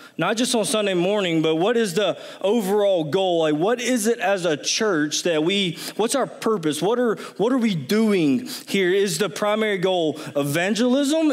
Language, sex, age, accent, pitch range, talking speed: English, male, 20-39, American, 160-210 Hz, 185 wpm